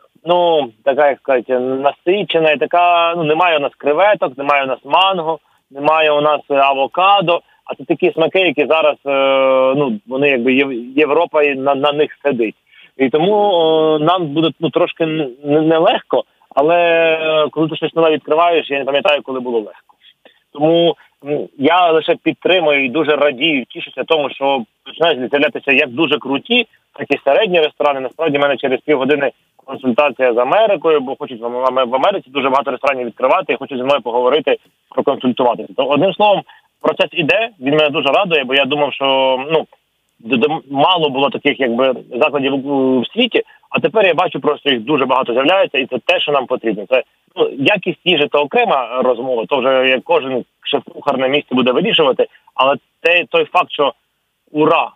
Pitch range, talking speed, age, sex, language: 135-170 Hz, 165 wpm, 30-49, male, Ukrainian